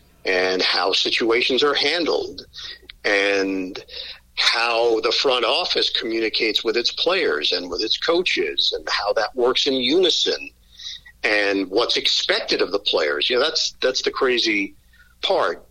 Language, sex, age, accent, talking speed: English, male, 50-69, American, 140 wpm